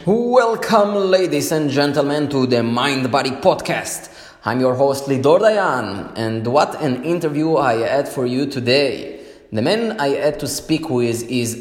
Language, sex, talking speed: English, male, 160 wpm